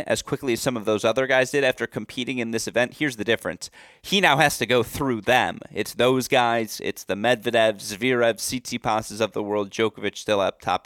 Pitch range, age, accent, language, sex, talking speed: 110-155 Hz, 30-49, American, English, male, 215 wpm